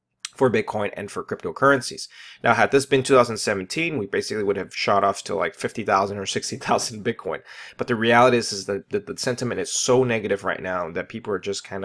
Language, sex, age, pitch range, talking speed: English, male, 30-49, 100-125 Hz, 205 wpm